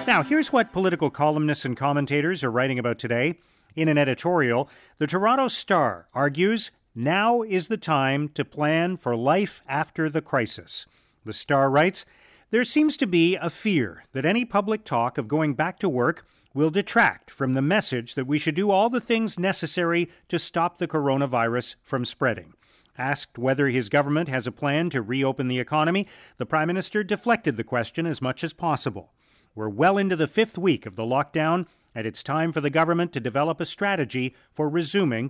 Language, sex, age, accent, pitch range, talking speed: English, male, 40-59, American, 135-180 Hz, 185 wpm